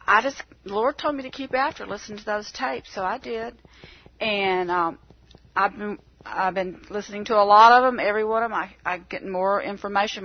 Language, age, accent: English, 40-59, American